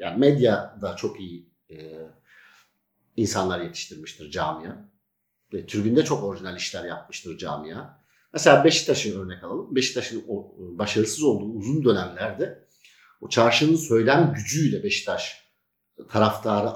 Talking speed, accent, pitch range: 105 wpm, native, 105-140 Hz